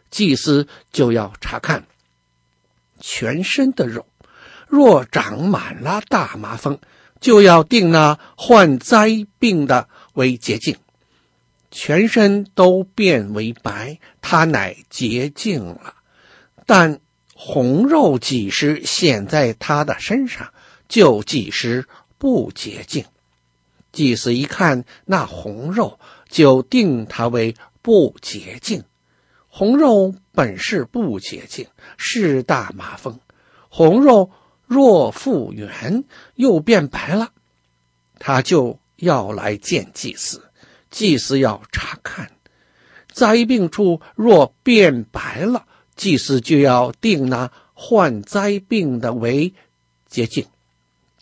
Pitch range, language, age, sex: 120-200 Hz, Chinese, 60-79, male